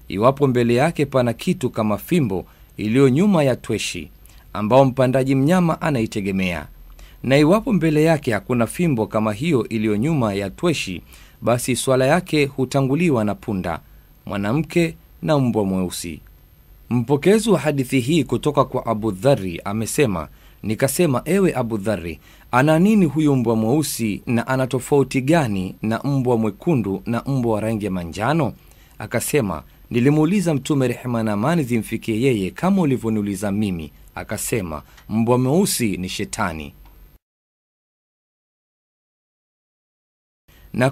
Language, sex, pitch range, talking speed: Swahili, male, 110-150 Hz, 125 wpm